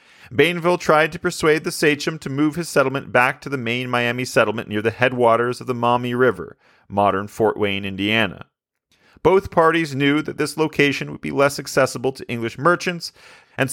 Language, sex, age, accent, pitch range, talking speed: English, male, 40-59, American, 120-150 Hz, 180 wpm